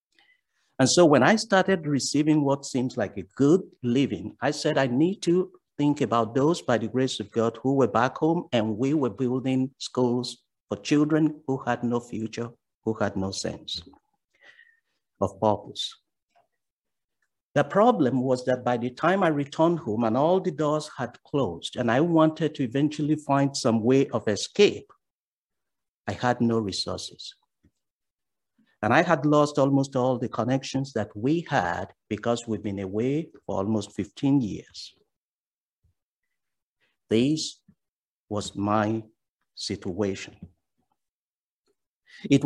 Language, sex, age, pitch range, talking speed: English, male, 50-69, 110-150 Hz, 145 wpm